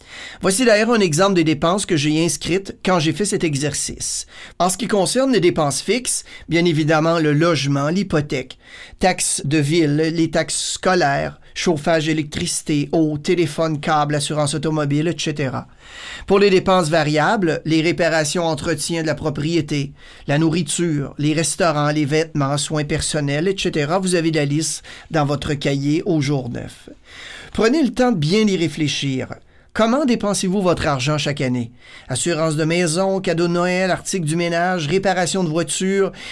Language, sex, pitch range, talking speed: French, male, 155-190 Hz, 155 wpm